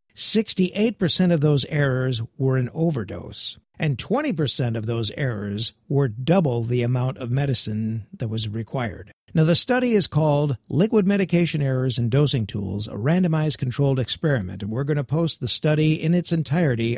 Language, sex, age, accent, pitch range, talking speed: English, male, 50-69, American, 120-155 Hz, 160 wpm